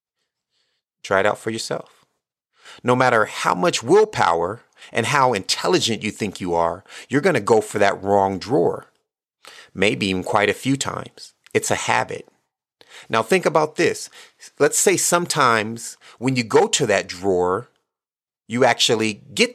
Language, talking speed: English, 155 wpm